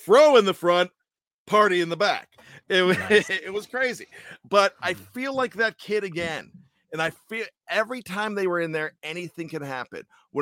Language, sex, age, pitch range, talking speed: English, male, 40-59, 145-185 Hz, 190 wpm